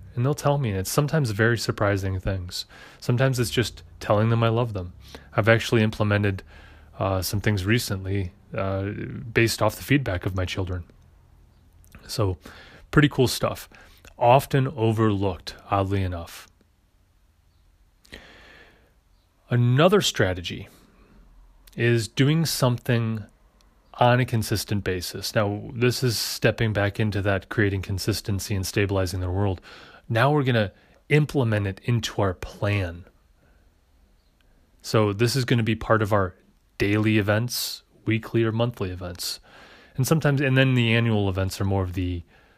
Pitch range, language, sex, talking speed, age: 95-115 Hz, English, male, 135 wpm, 30-49